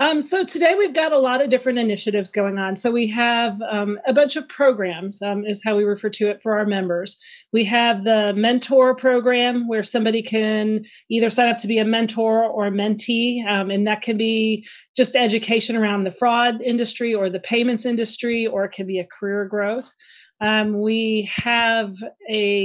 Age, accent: 30-49, American